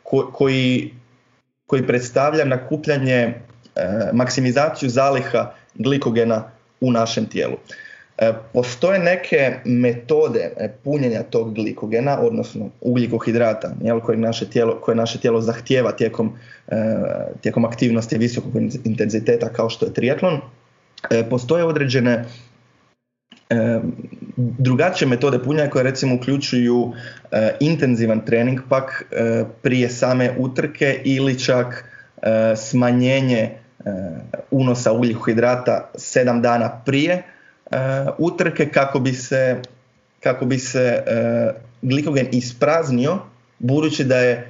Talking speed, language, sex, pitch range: 110 wpm, Croatian, male, 115-135 Hz